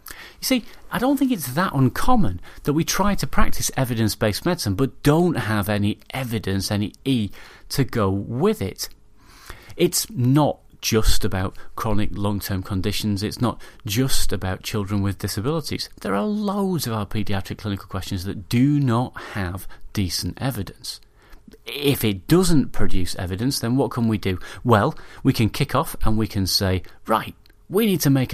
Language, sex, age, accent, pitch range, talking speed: English, male, 30-49, British, 95-125 Hz, 165 wpm